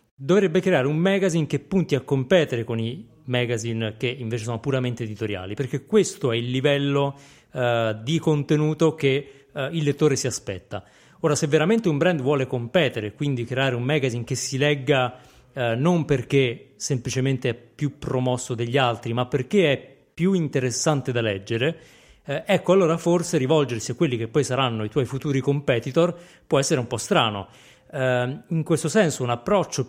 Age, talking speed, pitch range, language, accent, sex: 30-49, 170 wpm, 120-155 Hz, Italian, native, male